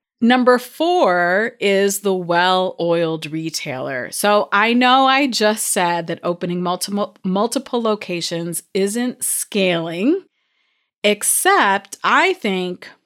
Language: English